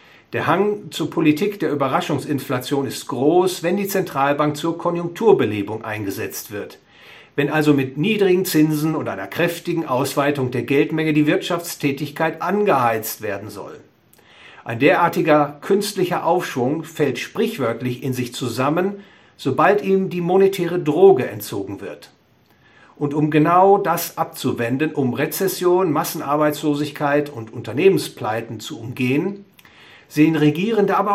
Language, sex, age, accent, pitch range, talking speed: English, male, 60-79, German, 140-175 Hz, 120 wpm